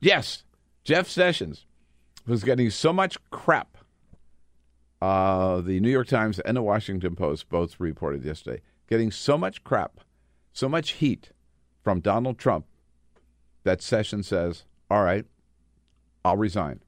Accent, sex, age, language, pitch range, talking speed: American, male, 50-69, English, 80-120 Hz, 130 wpm